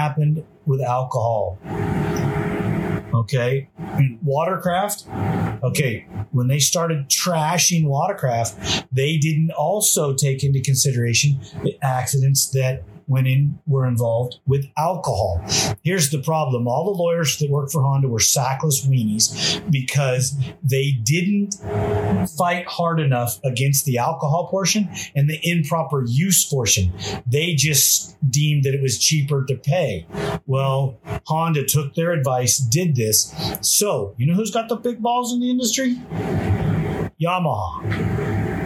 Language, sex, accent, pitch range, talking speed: English, male, American, 130-160 Hz, 125 wpm